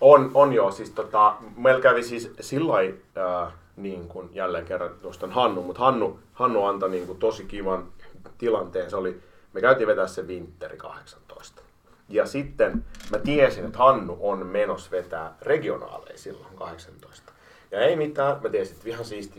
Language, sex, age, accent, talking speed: Finnish, male, 30-49, native, 155 wpm